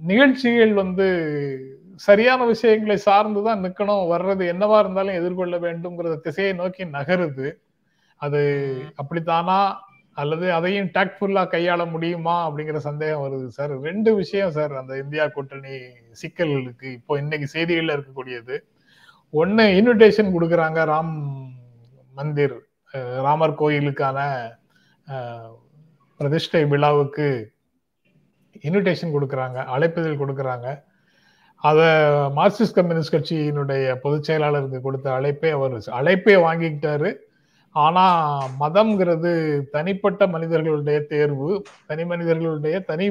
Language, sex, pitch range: Tamil, male, 140-185 Hz